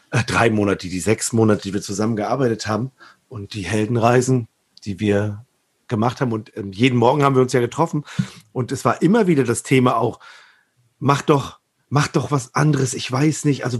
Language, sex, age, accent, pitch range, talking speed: German, male, 40-59, German, 115-150 Hz, 185 wpm